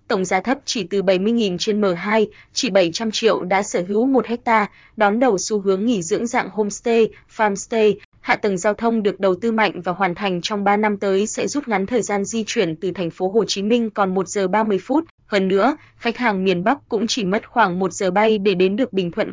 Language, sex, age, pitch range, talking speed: Vietnamese, female, 20-39, 195-225 Hz, 235 wpm